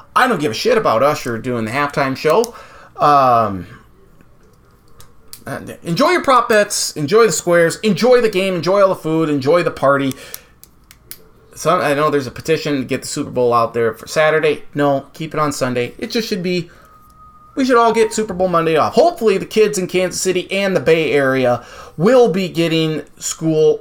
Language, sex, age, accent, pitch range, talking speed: English, male, 20-39, American, 145-215 Hz, 185 wpm